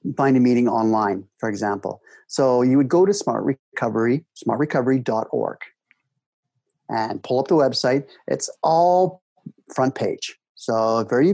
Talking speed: 130 wpm